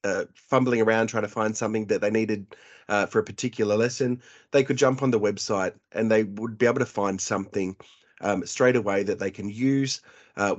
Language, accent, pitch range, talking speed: English, Australian, 100-125 Hz, 210 wpm